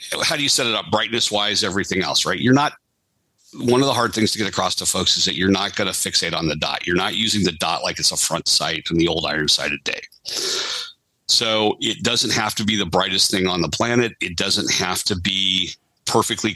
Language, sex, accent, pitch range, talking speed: English, male, American, 95-110 Hz, 245 wpm